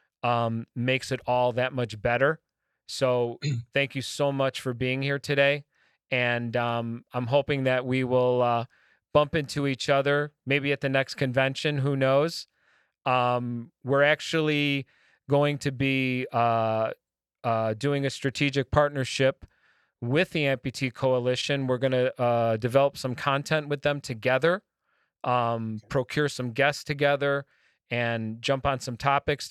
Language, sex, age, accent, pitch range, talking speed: English, male, 30-49, American, 125-145 Hz, 145 wpm